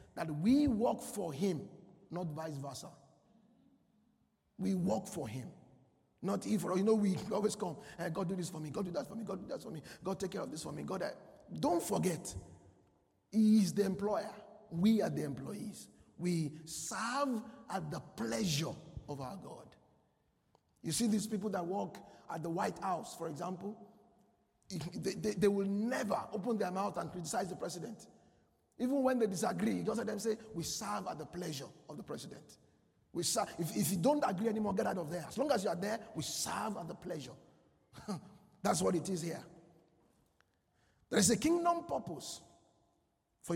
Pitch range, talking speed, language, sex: 160-220 Hz, 190 wpm, English, male